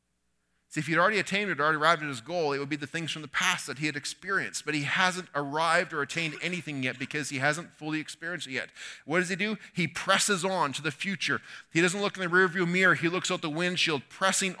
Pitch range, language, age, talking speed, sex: 155-190 Hz, English, 30-49, 250 wpm, male